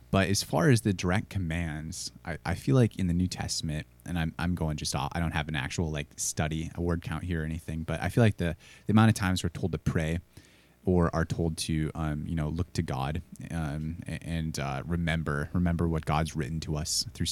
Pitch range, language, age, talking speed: 80-95 Hz, English, 20-39, 235 wpm